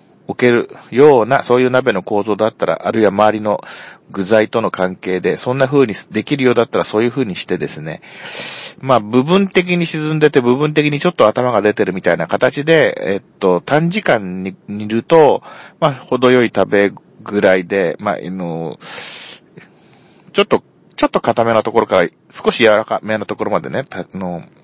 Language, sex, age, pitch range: Japanese, male, 40-59, 100-135 Hz